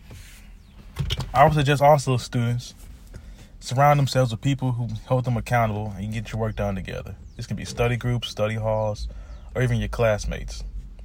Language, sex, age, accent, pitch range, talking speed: English, male, 20-39, American, 100-125 Hz, 175 wpm